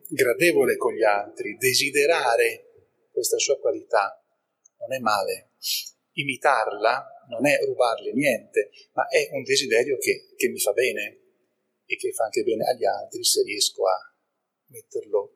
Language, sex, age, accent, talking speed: Italian, male, 30-49, native, 140 wpm